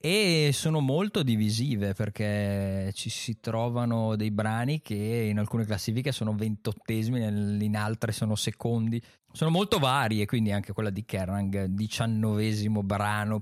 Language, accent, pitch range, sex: Italian, native, 105-130 Hz, male